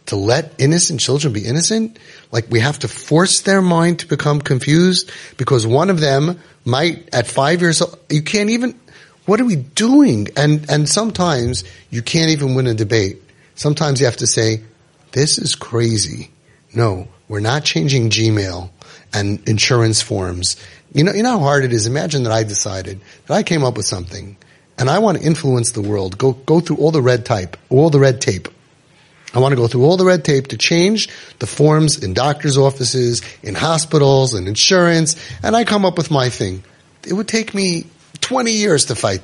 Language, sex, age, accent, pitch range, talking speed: English, male, 30-49, American, 120-185 Hz, 195 wpm